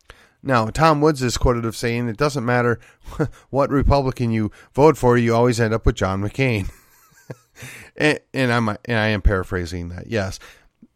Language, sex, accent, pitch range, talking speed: English, male, American, 110-145 Hz, 165 wpm